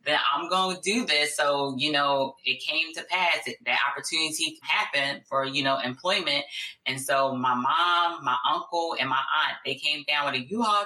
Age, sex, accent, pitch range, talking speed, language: 20-39, female, American, 135-185 Hz, 195 wpm, English